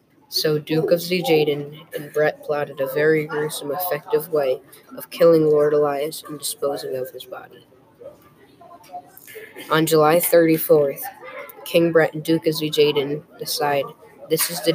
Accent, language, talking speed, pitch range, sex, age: American, English, 140 wpm, 150-180 Hz, female, 10-29